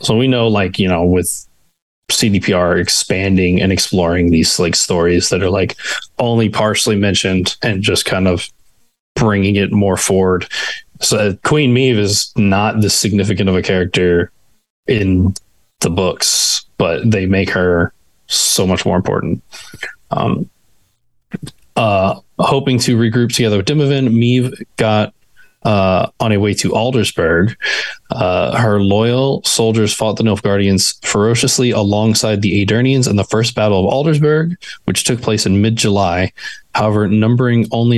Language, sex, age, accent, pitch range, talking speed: English, male, 20-39, American, 95-115 Hz, 140 wpm